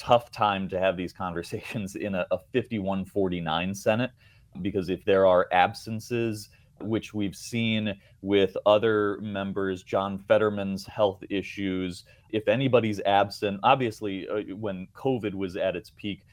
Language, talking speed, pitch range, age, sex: English, 135 wpm, 95-110 Hz, 30-49, male